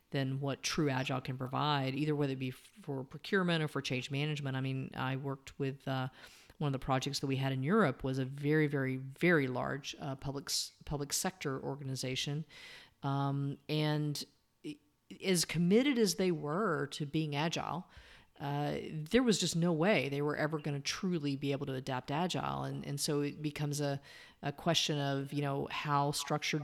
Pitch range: 140-165 Hz